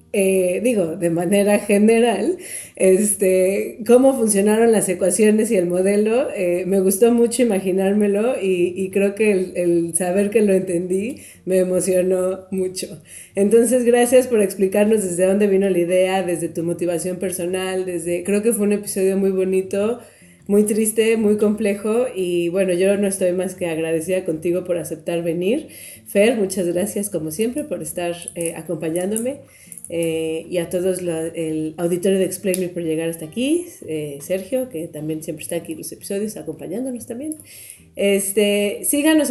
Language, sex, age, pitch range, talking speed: Spanish, female, 30-49, 175-220 Hz, 160 wpm